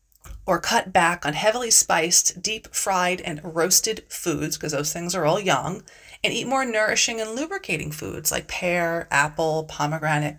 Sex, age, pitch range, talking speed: female, 30-49, 165-210 Hz, 160 wpm